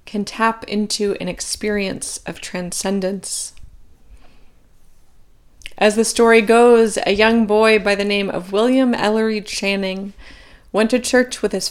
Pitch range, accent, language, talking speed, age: 195-230 Hz, American, English, 135 wpm, 20-39